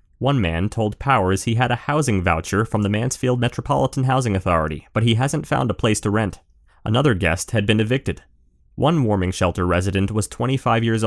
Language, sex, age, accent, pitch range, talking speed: English, male, 30-49, American, 95-125 Hz, 190 wpm